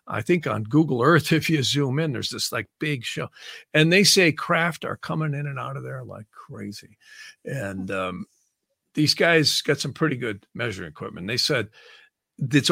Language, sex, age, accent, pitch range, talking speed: English, male, 50-69, American, 135-180 Hz, 190 wpm